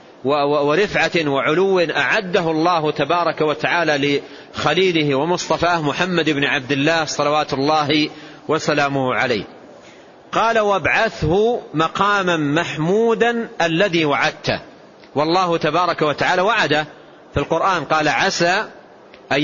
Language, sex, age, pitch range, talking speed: Arabic, male, 40-59, 150-195 Hz, 95 wpm